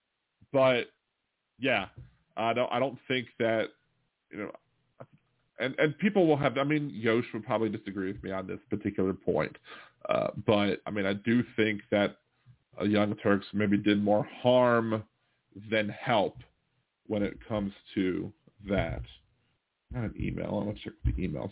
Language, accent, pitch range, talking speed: English, American, 100-120 Hz, 160 wpm